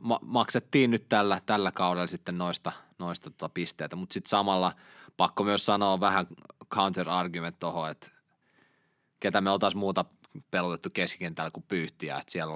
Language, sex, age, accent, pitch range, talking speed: Finnish, male, 20-39, native, 85-100 Hz, 155 wpm